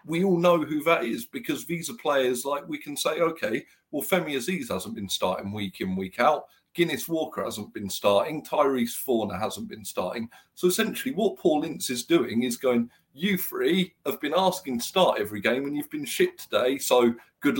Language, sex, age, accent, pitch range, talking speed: English, male, 50-69, British, 120-190 Hz, 205 wpm